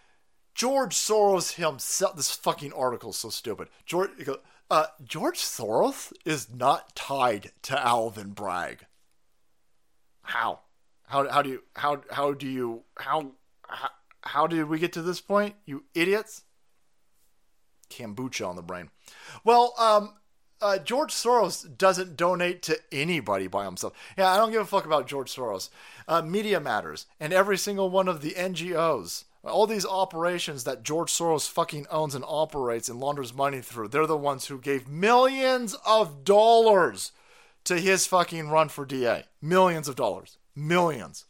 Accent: American